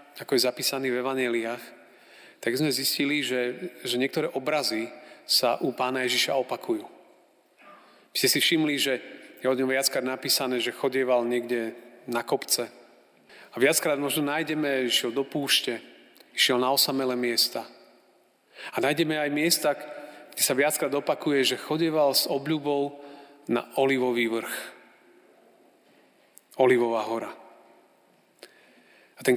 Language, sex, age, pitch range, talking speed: Slovak, male, 40-59, 125-145 Hz, 125 wpm